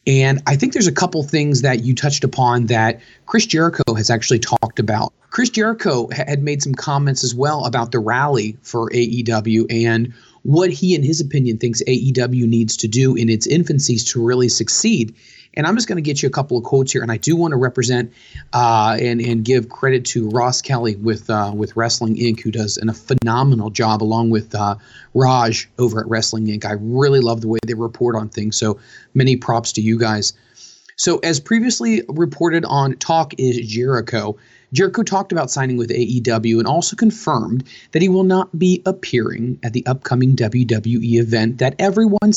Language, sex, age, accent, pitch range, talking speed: English, male, 30-49, American, 115-150 Hz, 195 wpm